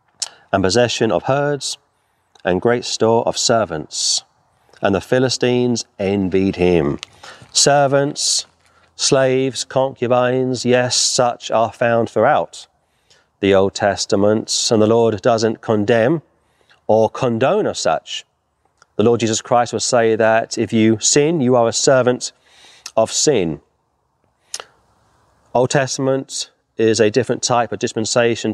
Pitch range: 110-135 Hz